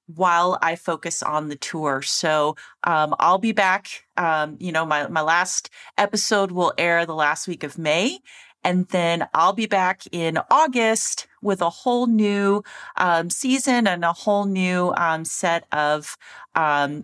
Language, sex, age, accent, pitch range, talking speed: English, female, 40-59, American, 165-235 Hz, 160 wpm